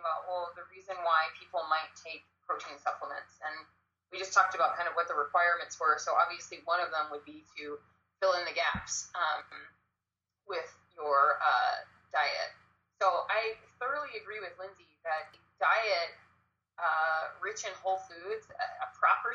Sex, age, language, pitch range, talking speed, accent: female, 20-39, English, 160-195 Hz, 165 wpm, American